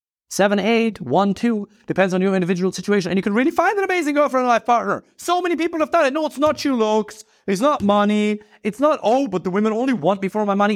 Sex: male